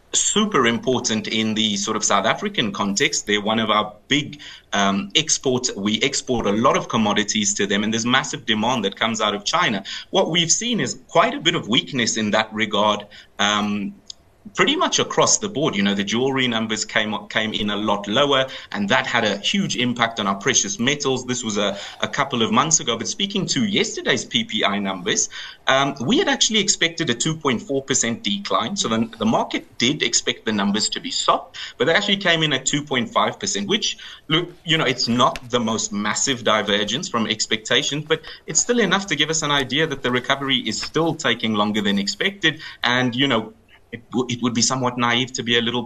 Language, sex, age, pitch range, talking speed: English, male, 30-49, 105-140 Hz, 205 wpm